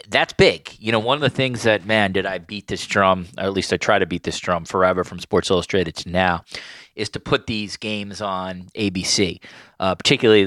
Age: 30-49